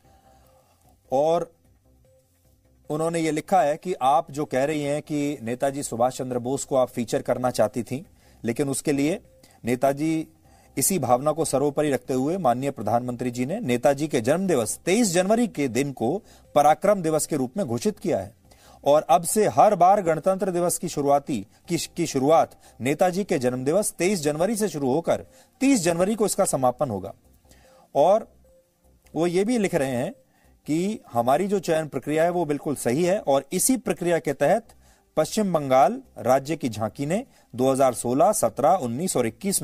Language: English